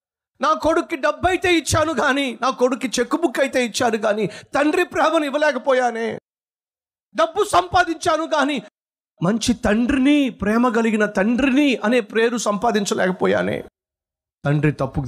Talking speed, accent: 115 wpm, native